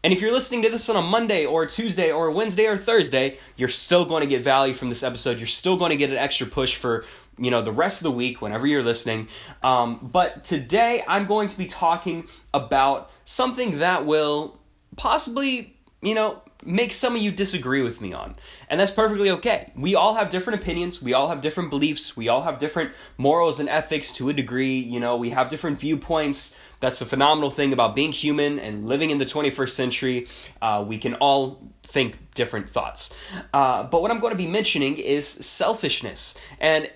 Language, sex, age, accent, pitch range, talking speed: English, male, 20-39, American, 135-195 Hz, 205 wpm